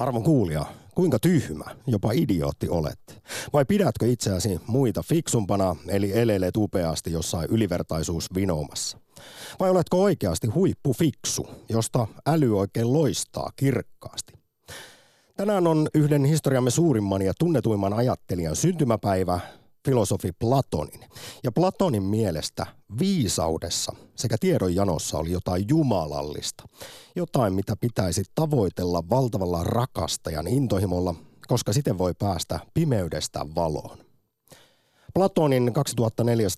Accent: native